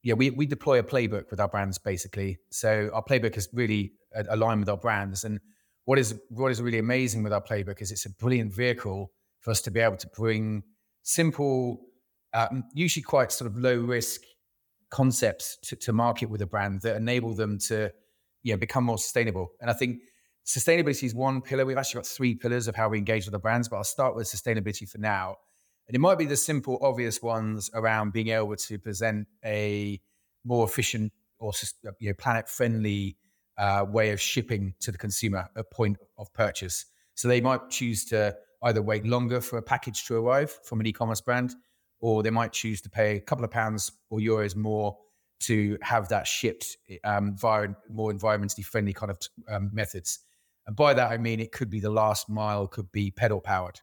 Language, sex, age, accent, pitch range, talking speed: English, male, 30-49, British, 105-120 Hz, 195 wpm